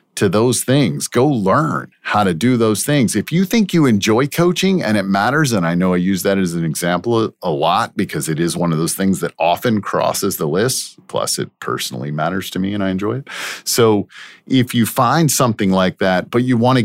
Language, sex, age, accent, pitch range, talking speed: English, male, 50-69, American, 105-140 Hz, 225 wpm